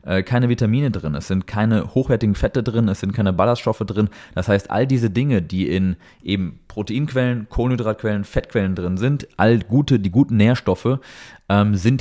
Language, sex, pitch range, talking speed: German, male, 90-120 Hz, 170 wpm